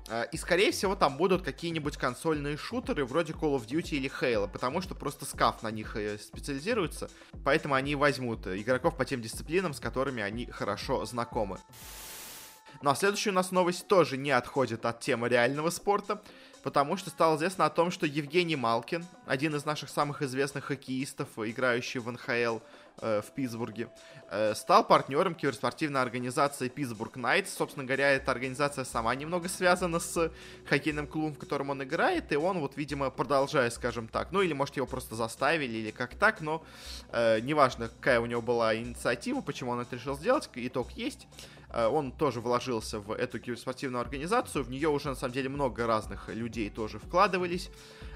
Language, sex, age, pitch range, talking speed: Russian, male, 20-39, 120-160 Hz, 165 wpm